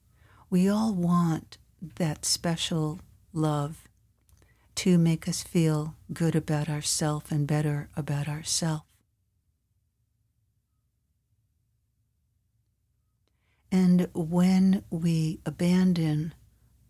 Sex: female